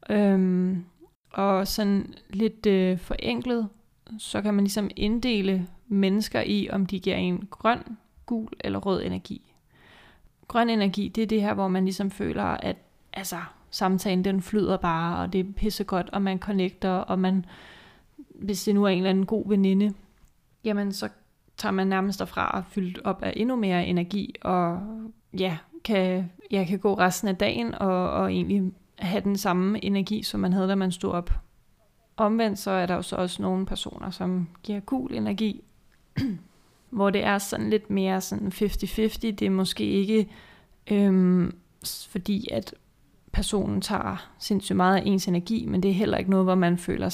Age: 20-39